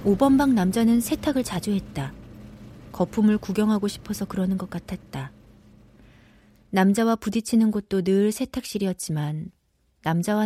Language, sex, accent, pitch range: Korean, female, native, 160-215 Hz